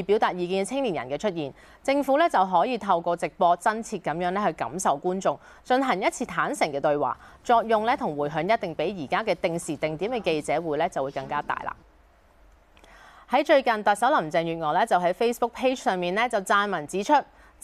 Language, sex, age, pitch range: Chinese, female, 30-49, 160-230 Hz